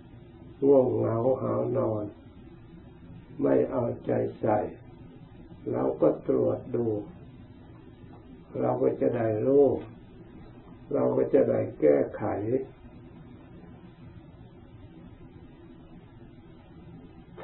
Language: Thai